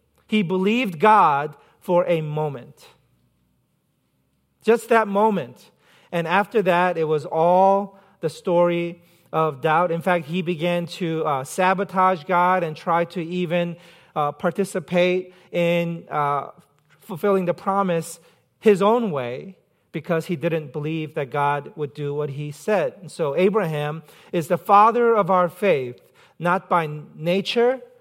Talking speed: 135 wpm